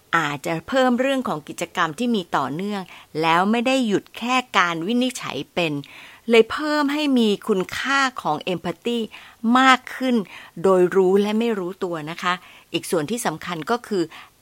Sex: female